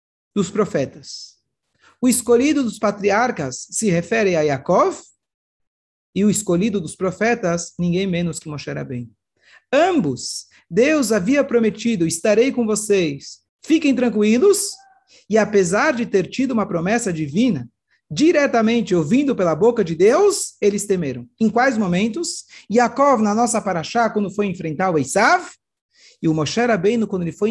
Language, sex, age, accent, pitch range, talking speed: Portuguese, male, 40-59, Brazilian, 155-235 Hz, 140 wpm